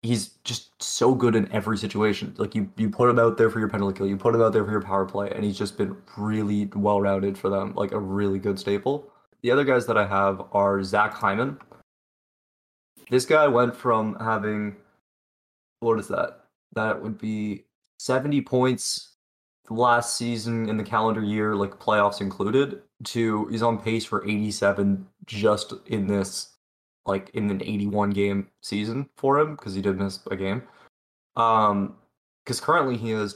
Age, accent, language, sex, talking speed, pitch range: 20-39, American, English, male, 175 wpm, 100-115 Hz